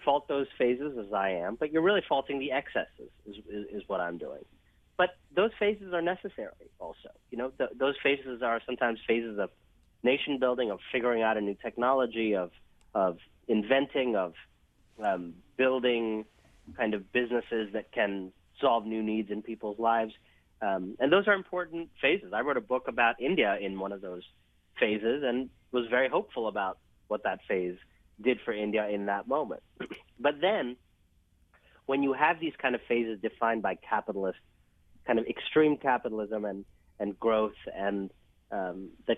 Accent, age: American, 30-49